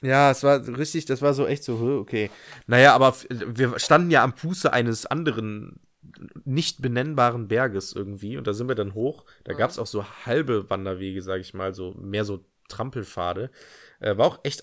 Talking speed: 195 wpm